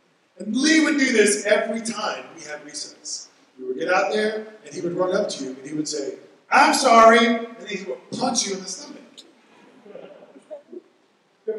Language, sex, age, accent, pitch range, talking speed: English, male, 40-59, American, 180-285 Hz, 190 wpm